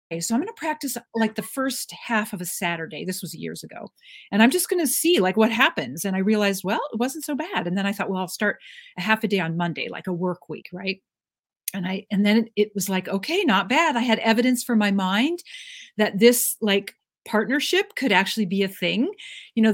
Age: 40-59